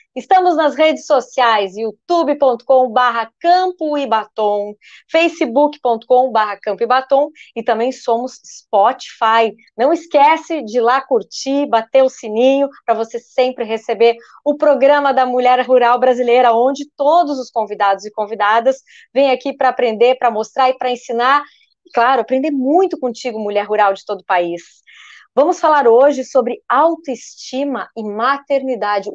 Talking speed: 140 wpm